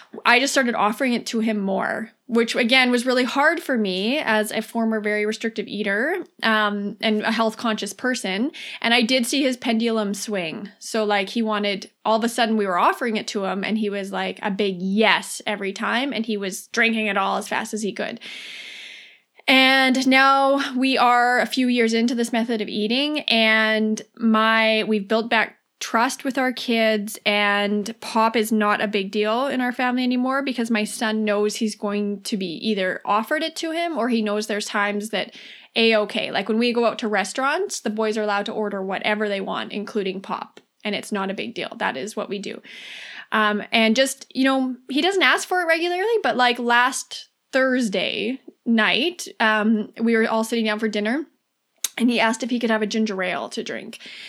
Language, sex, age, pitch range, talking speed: English, female, 20-39, 210-250 Hz, 205 wpm